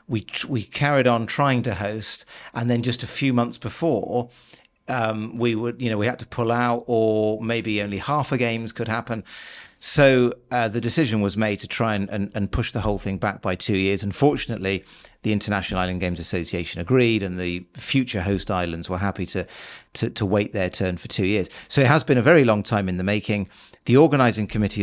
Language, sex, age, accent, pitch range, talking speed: English, male, 40-59, British, 100-125 Hz, 215 wpm